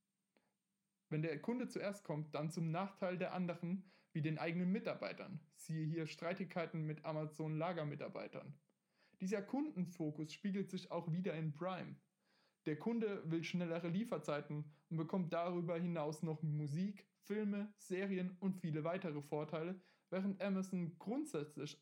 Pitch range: 155-195 Hz